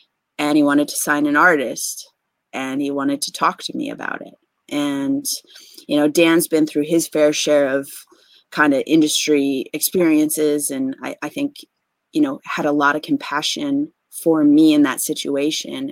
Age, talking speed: 30-49, 175 wpm